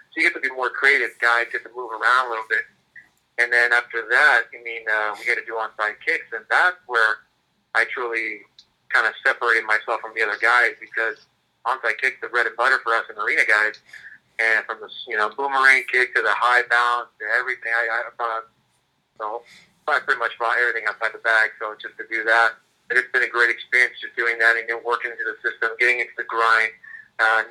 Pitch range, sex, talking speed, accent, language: 110-120 Hz, male, 225 wpm, American, English